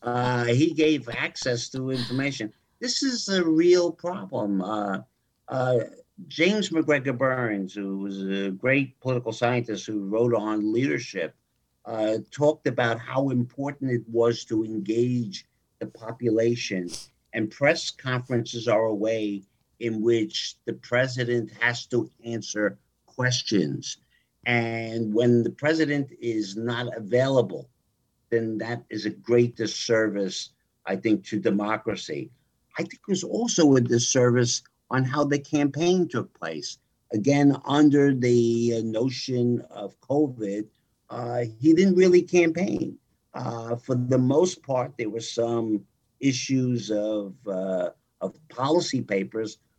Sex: male